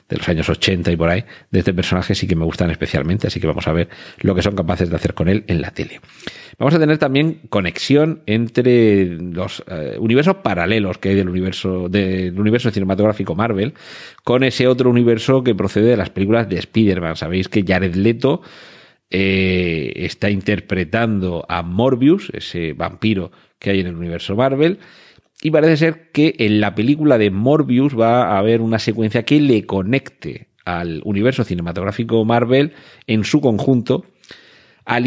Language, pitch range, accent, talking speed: Spanish, 95-120 Hz, Spanish, 175 wpm